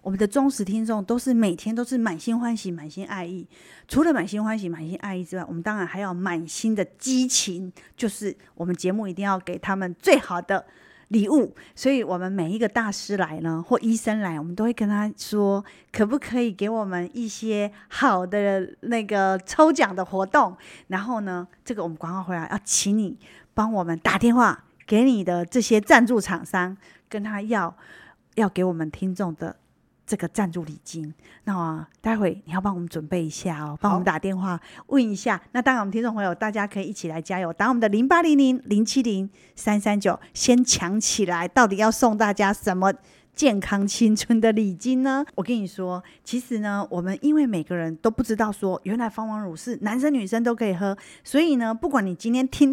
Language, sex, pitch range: Chinese, female, 185-230 Hz